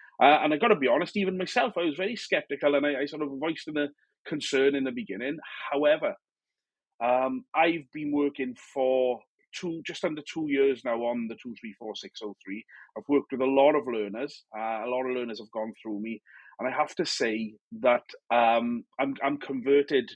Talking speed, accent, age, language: 195 wpm, British, 30-49, English